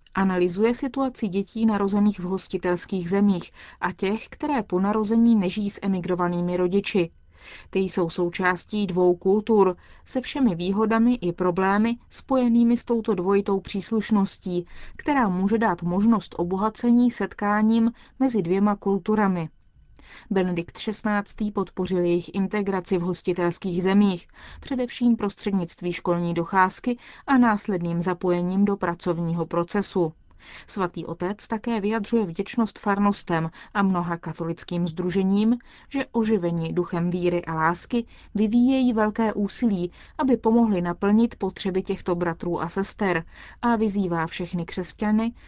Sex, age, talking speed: female, 30-49, 115 wpm